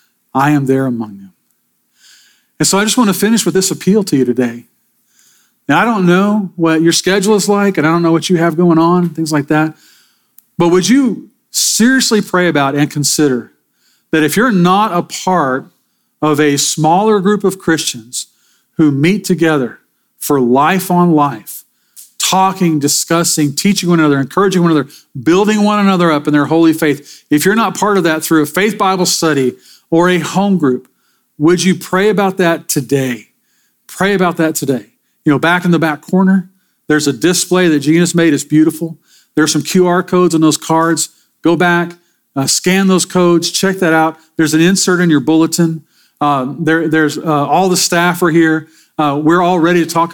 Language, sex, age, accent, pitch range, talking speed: English, male, 40-59, American, 150-185 Hz, 190 wpm